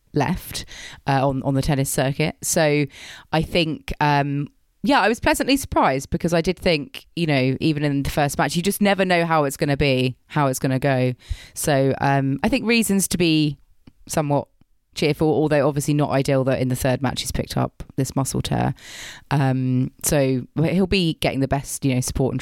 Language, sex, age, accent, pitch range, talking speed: English, female, 20-39, British, 135-175 Hz, 205 wpm